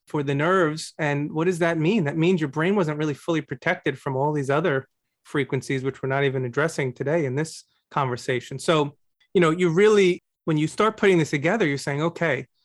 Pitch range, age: 140-175 Hz, 30-49